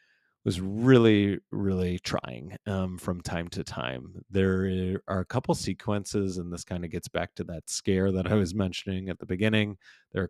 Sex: male